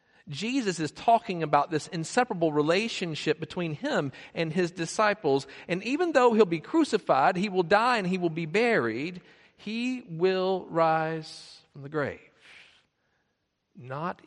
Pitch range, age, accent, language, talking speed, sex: 145-210 Hz, 50-69, American, English, 140 wpm, male